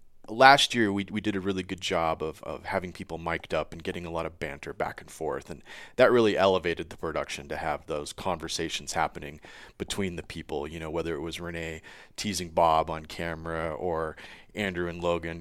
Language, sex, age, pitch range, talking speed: English, male, 30-49, 85-100 Hz, 205 wpm